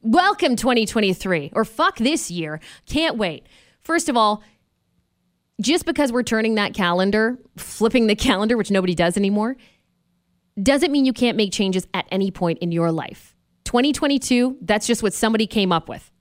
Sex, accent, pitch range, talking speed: female, American, 195-275 Hz, 165 wpm